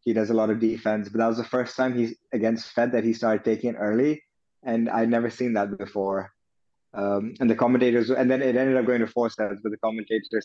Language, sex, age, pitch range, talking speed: English, male, 20-39, 105-125 Hz, 245 wpm